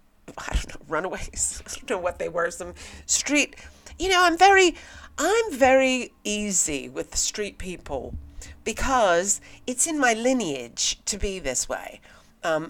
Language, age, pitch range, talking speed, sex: English, 40-59, 145-215 Hz, 155 wpm, female